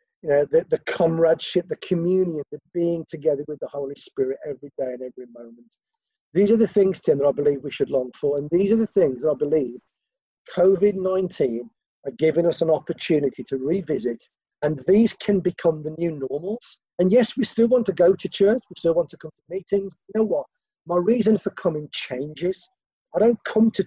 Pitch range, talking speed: 150-220 Hz, 205 wpm